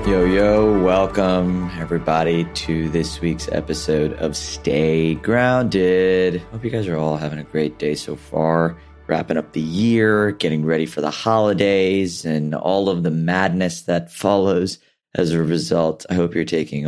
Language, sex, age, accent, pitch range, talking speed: English, male, 30-49, American, 80-95 Hz, 160 wpm